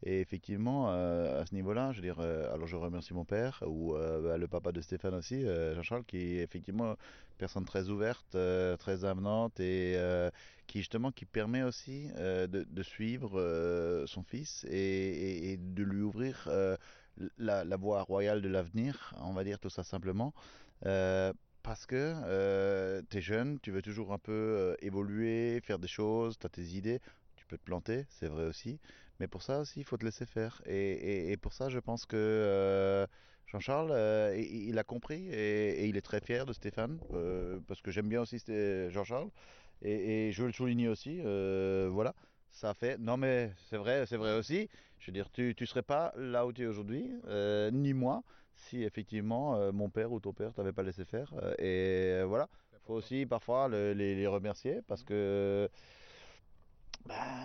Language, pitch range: French, 95-115 Hz